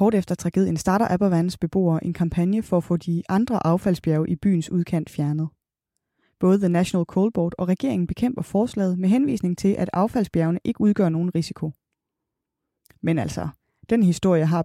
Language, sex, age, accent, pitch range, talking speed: Danish, female, 20-39, native, 170-210 Hz, 170 wpm